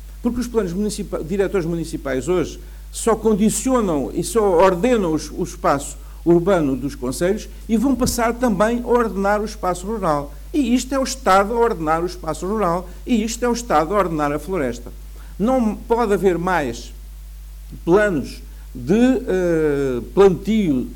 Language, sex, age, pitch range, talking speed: Portuguese, male, 50-69, 160-225 Hz, 145 wpm